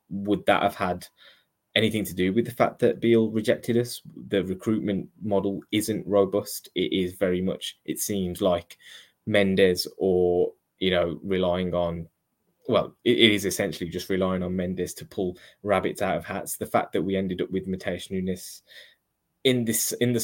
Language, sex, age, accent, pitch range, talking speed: English, male, 10-29, British, 90-100 Hz, 175 wpm